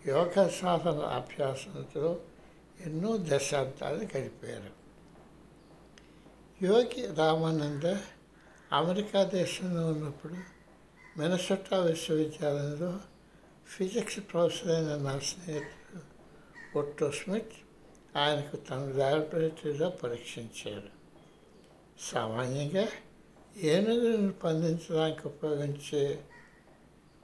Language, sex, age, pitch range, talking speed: Telugu, male, 60-79, 145-180 Hz, 60 wpm